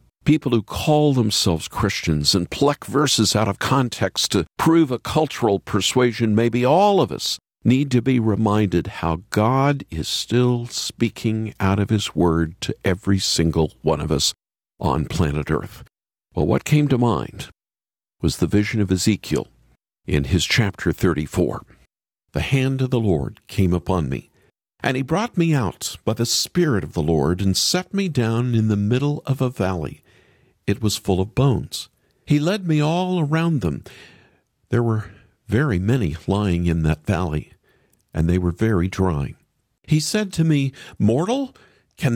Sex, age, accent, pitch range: male, 50-69, American, 95-140 Hz